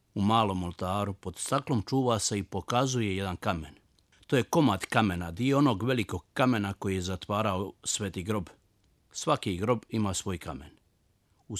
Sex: male